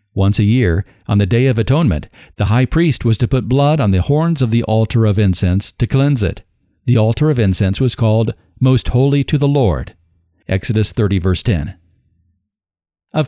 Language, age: English, 50-69